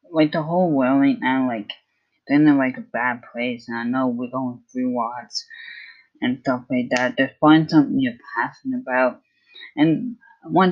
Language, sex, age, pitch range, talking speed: English, female, 10-29, 125-190 Hz, 185 wpm